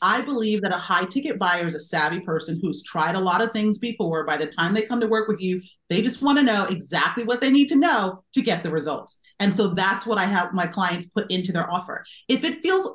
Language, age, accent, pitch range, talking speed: English, 30-49, American, 190-255 Hz, 265 wpm